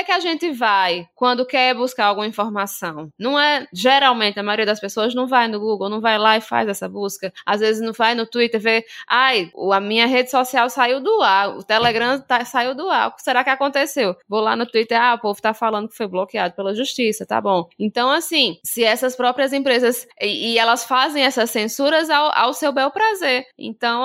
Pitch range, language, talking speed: 215-270 Hz, Portuguese, 215 wpm